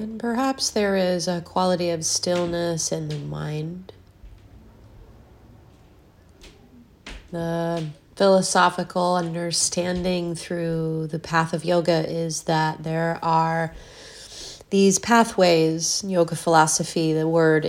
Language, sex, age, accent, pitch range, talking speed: English, female, 30-49, American, 155-195 Hz, 100 wpm